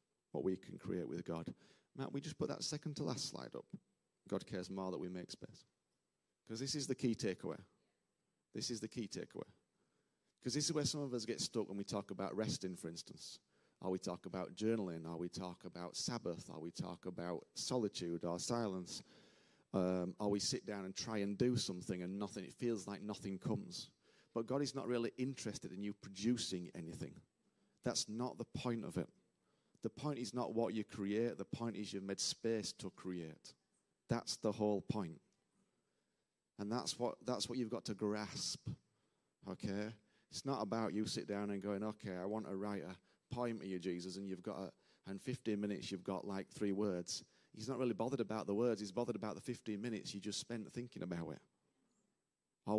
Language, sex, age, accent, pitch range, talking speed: English, male, 40-59, British, 95-120 Hz, 205 wpm